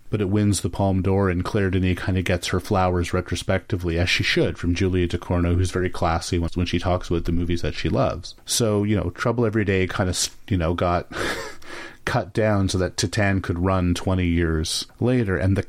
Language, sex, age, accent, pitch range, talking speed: English, male, 40-59, American, 85-105 Hz, 220 wpm